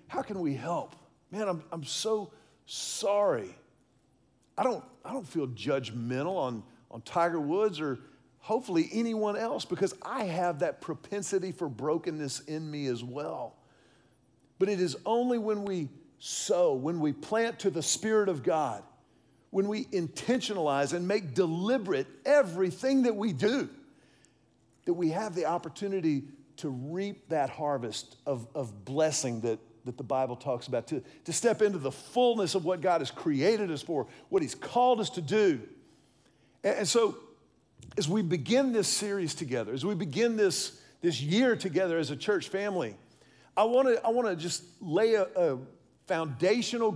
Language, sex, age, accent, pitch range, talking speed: English, male, 50-69, American, 150-215 Hz, 160 wpm